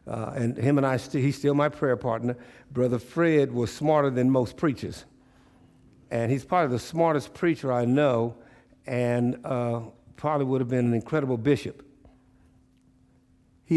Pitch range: 115-135 Hz